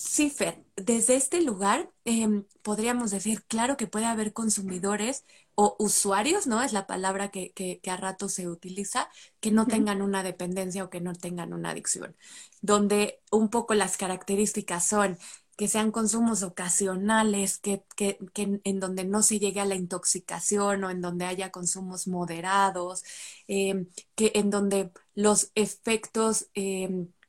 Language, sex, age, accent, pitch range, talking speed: Spanish, female, 20-39, Mexican, 190-220 Hz, 155 wpm